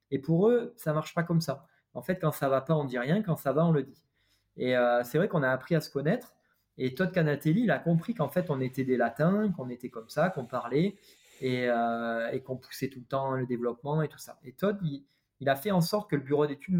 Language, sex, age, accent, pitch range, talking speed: French, male, 20-39, French, 130-165 Hz, 280 wpm